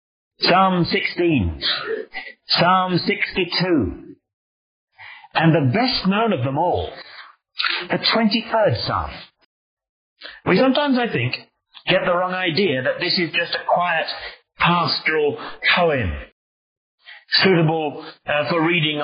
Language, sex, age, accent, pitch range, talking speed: English, male, 40-59, British, 145-205 Hz, 105 wpm